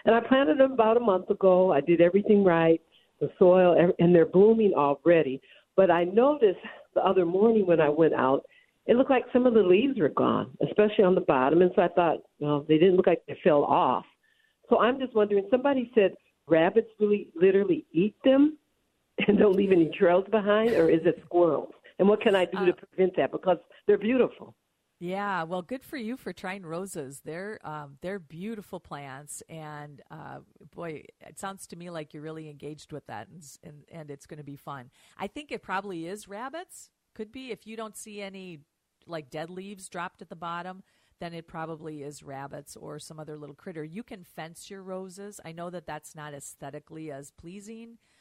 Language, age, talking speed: English, 50-69, 200 wpm